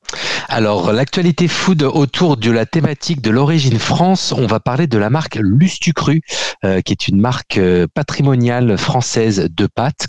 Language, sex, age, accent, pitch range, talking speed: French, male, 40-59, French, 110-150 Hz, 160 wpm